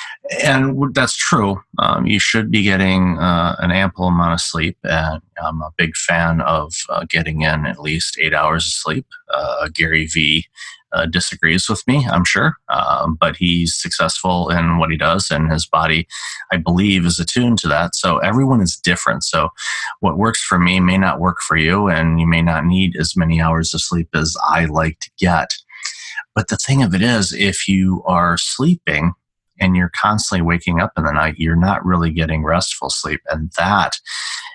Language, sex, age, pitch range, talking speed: English, male, 30-49, 80-95 Hz, 190 wpm